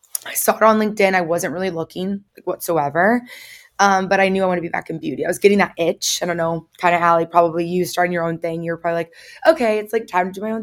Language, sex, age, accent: English, female, 20-39, American